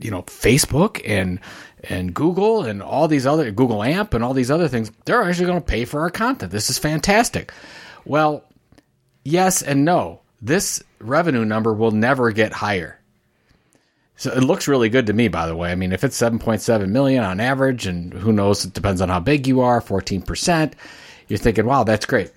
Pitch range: 100-135 Hz